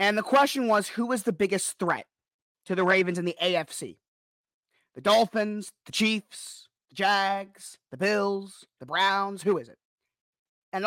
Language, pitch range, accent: English, 175-230 Hz, American